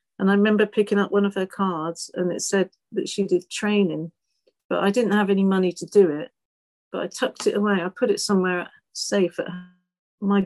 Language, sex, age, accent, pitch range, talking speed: English, female, 50-69, British, 170-195 Hz, 205 wpm